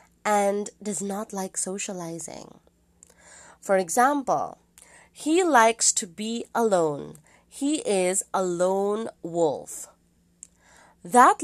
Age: 30-49